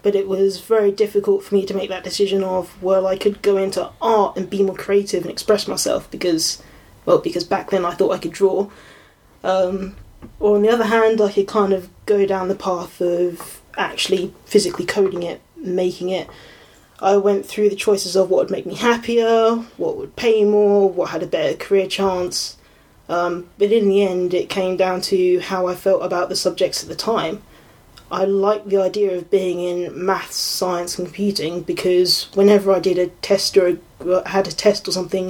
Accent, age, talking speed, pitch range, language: British, 20-39, 200 wpm, 180-205 Hz, English